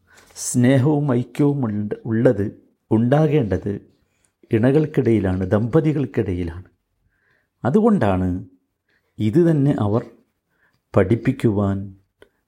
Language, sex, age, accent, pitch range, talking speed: Malayalam, male, 50-69, native, 100-130 Hz, 60 wpm